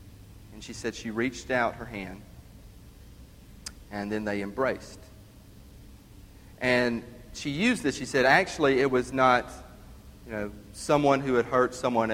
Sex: male